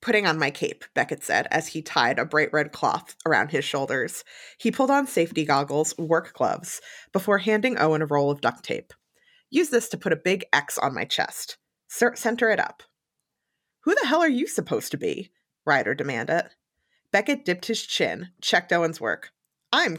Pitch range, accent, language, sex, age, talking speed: 160-240 Hz, American, English, female, 20-39, 185 wpm